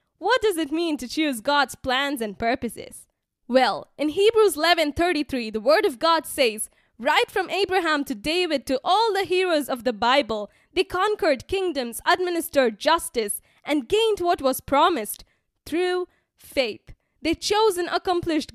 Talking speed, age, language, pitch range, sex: 160 wpm, 10-29, English, 255-355 Hz, female